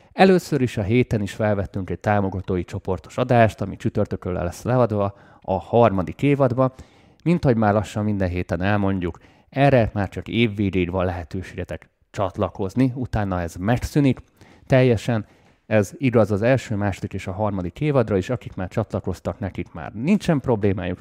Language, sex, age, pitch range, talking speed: Hungarian, male, 30-49, 95-120 Hz, 150 wpm